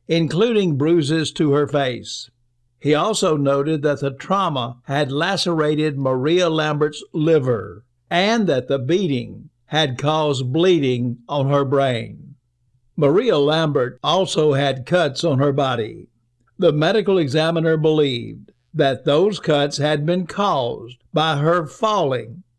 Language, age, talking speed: English, 60-79, 125 wpm